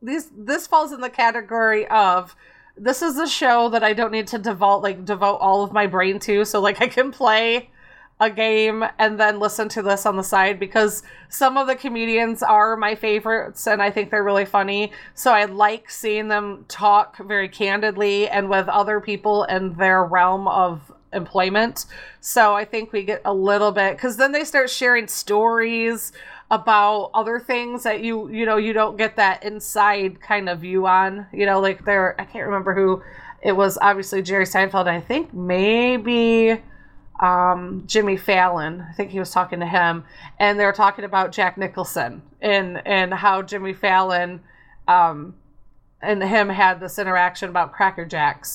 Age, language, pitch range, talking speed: 30-49, English, 190-220 Hz, 180 wpm